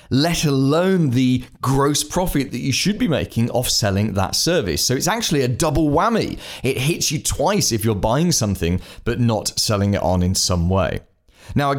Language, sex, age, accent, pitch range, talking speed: English, male, 30-49, British, 105-145 Hz, 195 wpm